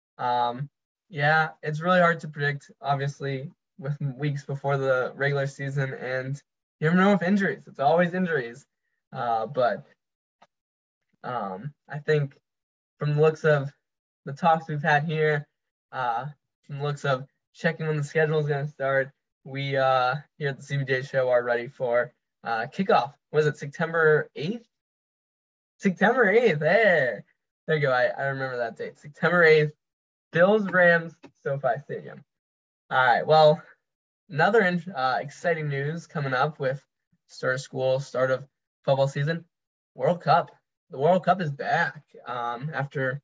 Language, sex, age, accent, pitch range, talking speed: English, male, 10-29, American, 135-160 Hz, 150 wpm